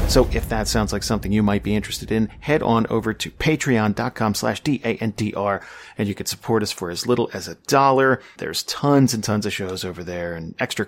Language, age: English, 40-59